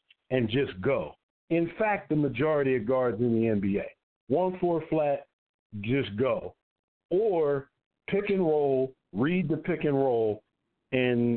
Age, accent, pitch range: 50-69, American, 120-150 Hz